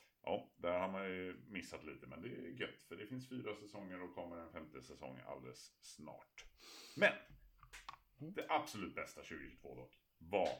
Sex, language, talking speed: male, Swedish, 170 wpm